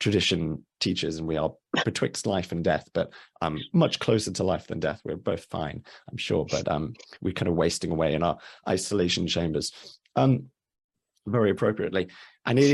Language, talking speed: English, 180 wpm